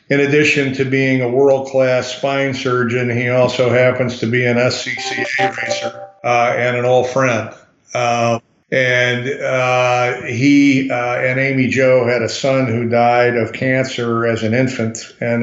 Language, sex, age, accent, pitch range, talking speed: English, male, 50-69, American, 120-130 Hz, 155 wpm